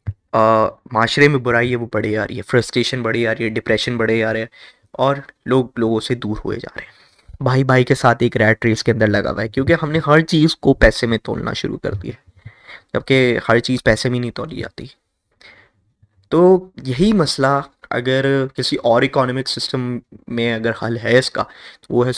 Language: Urdu